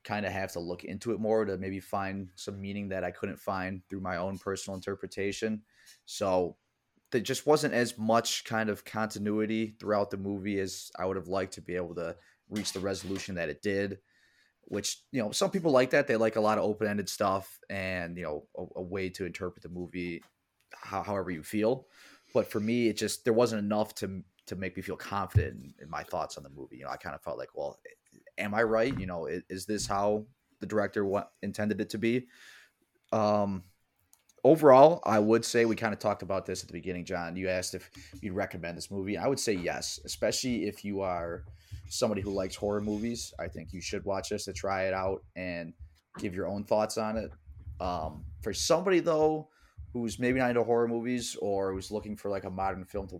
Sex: male